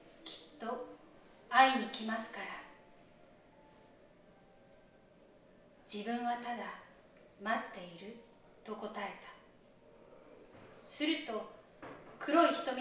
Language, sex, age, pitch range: Japanese, female, 40-59, 200-270 Hz